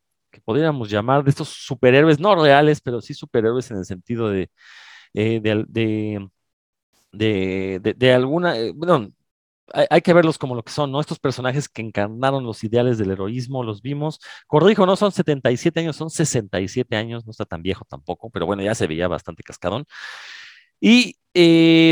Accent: Mexican